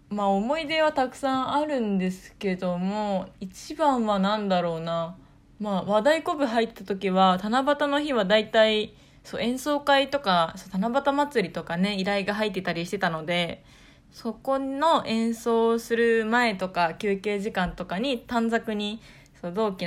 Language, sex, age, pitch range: Japanese, female, 20-39, 180-230 Hz